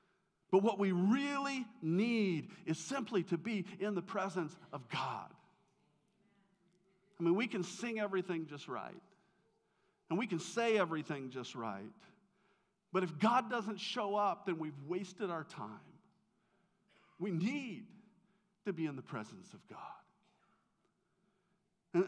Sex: male